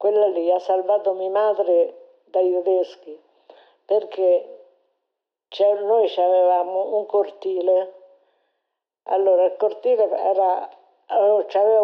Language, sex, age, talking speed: Italian, female, 50-69, 85 wpm